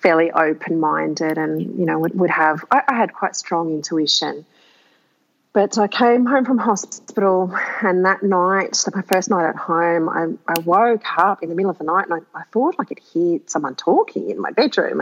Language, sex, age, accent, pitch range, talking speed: English, female, 40-59, Australian, 160-205 Hz, 200 wpm